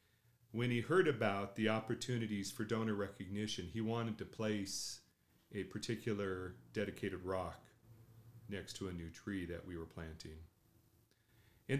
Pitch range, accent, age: 90-120 Hz, American, 40-59